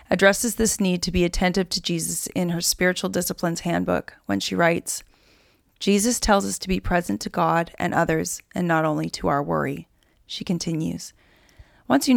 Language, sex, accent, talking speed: English, female, American, 175 wpm